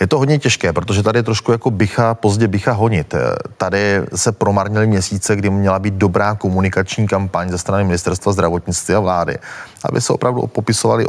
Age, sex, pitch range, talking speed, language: 30-49, male, 95-110 Hz, 180 wpm, Czech